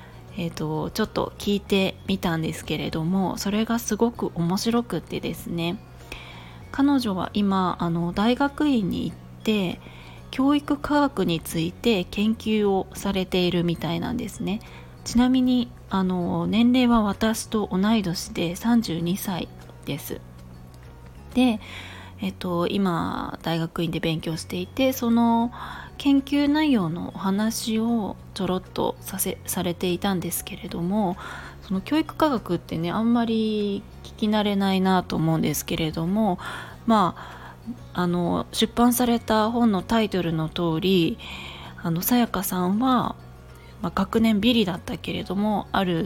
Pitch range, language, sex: 170-230 Hz, Japanese, female